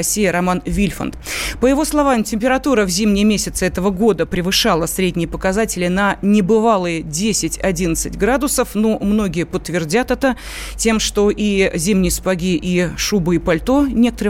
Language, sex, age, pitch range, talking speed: Russian, female, 30-49, 185-230 Hz, 140 wpm